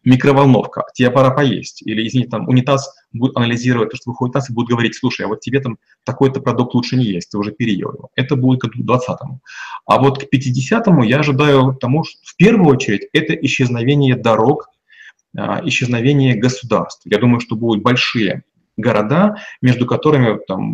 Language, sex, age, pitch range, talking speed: Russian, male, 30-49, 120-140 Hz, 175 wpm